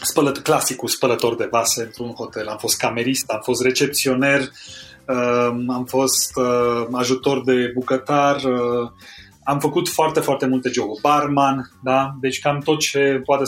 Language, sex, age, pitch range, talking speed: Romanian, male, 30-49, 120-140 Hz, 155 wpm